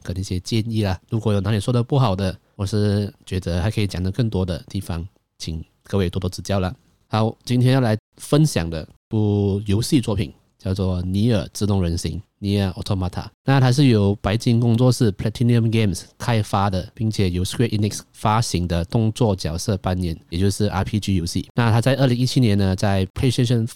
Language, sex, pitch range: Chinese, male, 95-120 Hz